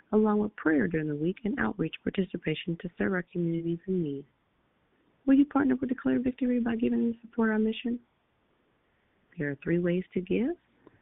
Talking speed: 180 wpm